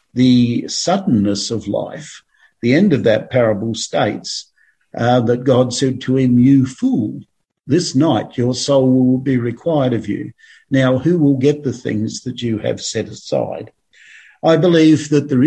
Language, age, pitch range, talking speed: English, 50-69, 125-150 Hz, 165 wpm